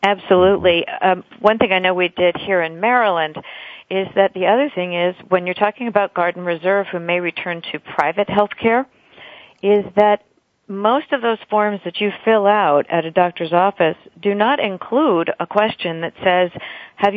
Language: English